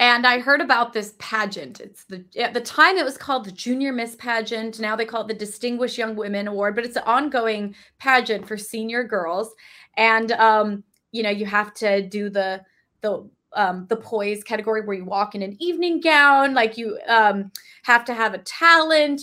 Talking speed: 200 wpm